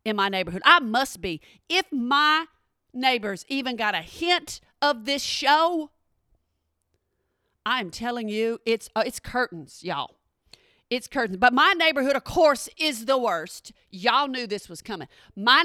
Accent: American